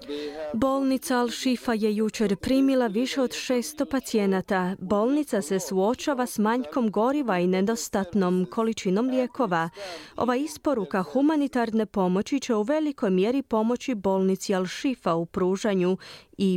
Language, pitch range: Croatian, 190-250 Hz